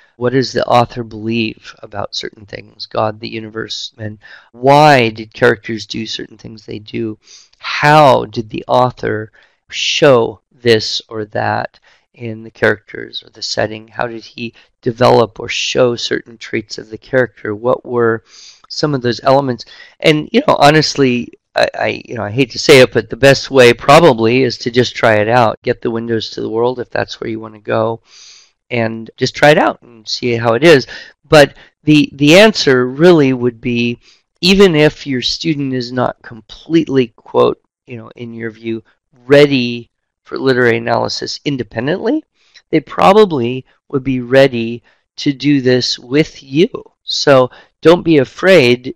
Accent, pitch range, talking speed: American, 115-140 Hz, 170 wpm